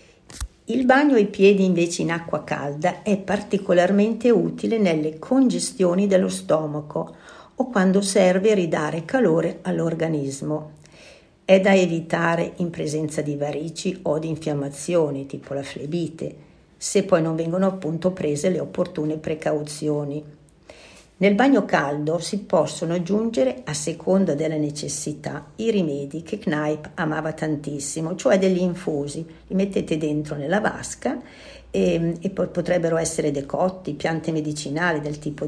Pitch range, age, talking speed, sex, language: 150-185 Hz, 50-69, 130 wpm, female, Italian